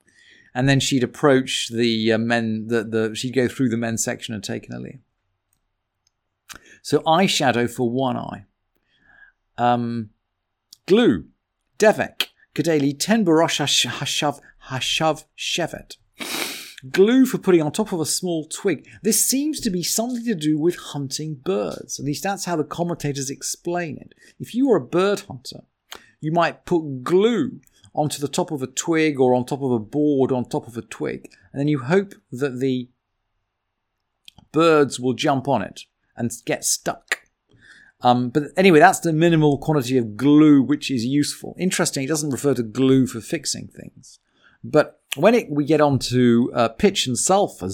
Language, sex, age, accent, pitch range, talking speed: English, male, 40-59, British, 120-160 Hz, 165 wpm